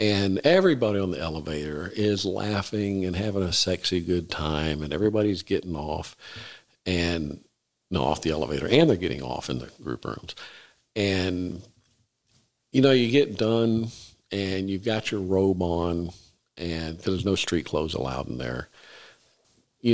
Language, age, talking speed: English, 50-69, 155 wpm